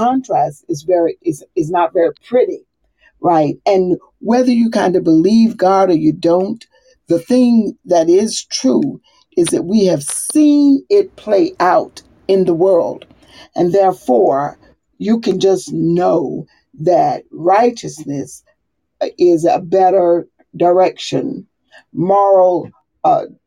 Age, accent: 50-69, American